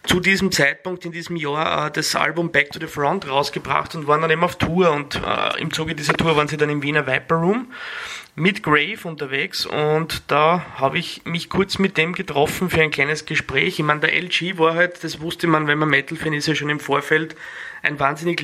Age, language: 30-49, German